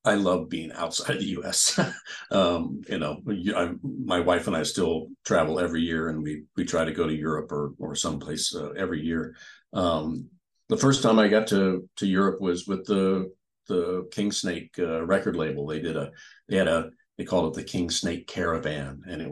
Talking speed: 200 wpm